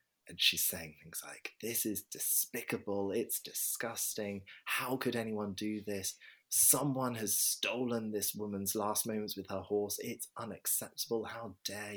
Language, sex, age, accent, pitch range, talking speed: English, male, 30-49, British, 85-115 Hz, 145 wpm